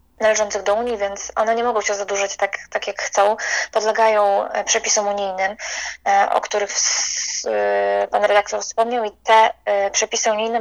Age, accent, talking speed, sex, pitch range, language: 20-39, native, 140 wpm, female, 200-225 Hz, Polish